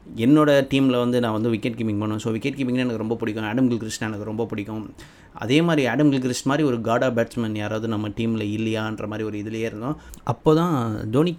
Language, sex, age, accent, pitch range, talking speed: Tamil, male, 20-39, native, 110-130 Hz, 200 wpm